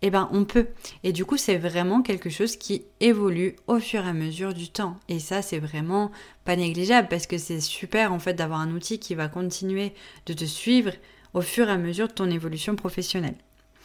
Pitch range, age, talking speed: 170-205 Hz, 20-39, 215 wpm